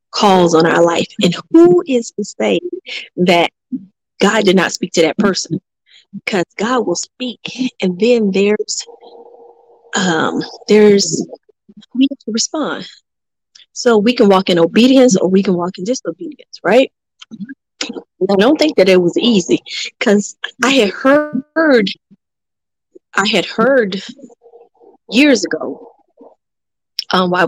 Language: English